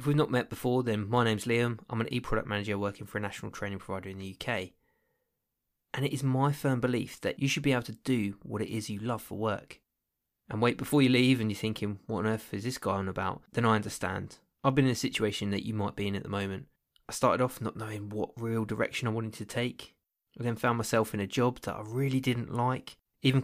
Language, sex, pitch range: English, male, 105-125 Hz